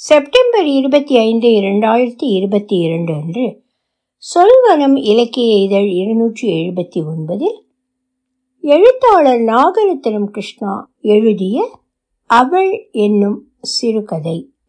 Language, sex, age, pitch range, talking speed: Tamil, female, 60-79, 205-290 Hz, 70 wpm